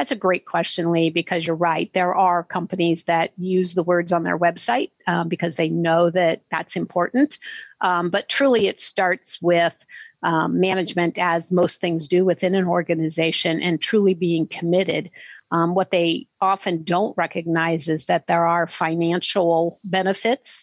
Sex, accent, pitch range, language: female, American, 170-190 Hz, English